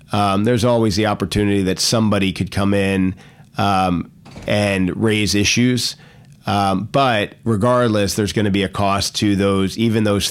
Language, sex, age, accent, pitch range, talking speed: English, male, 40-59, American, 95-115 Hz, 155 wpm